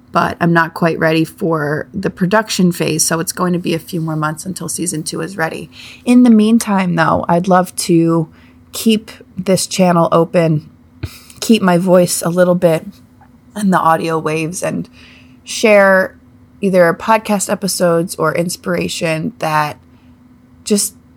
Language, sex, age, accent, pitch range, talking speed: English, female, 30-49, American, 125-185 Hz, 150 wpm